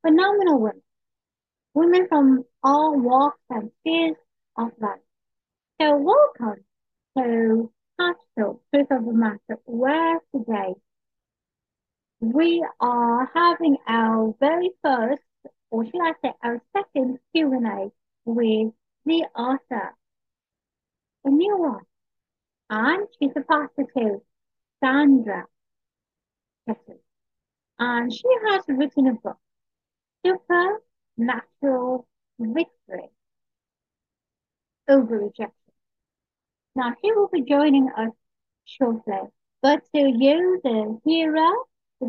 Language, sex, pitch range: English, female, 230-315 Hz